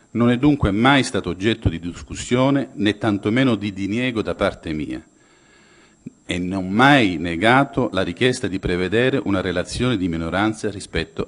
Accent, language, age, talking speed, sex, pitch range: native, Italian, 50-69, 150 wpm, male, 95-125 Hz